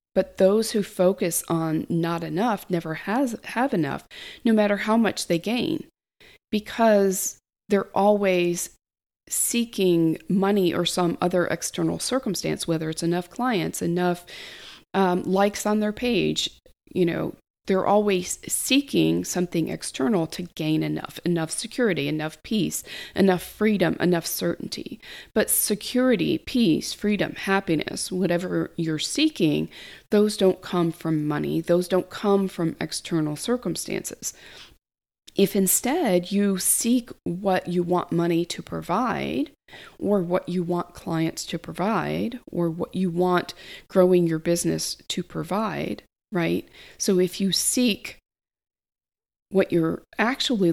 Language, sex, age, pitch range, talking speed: English, female, 40-59, 170-205 Hz, 125 wpm